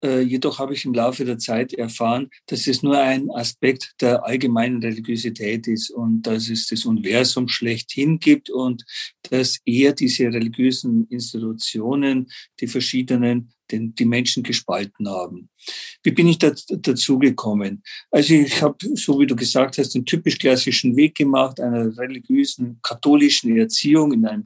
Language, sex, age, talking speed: German, male, 50-69, 150 wpm